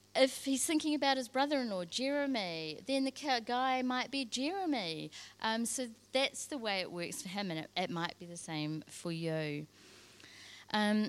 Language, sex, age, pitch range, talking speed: English, female, 30-49, 170-250 Hz, 175 wpm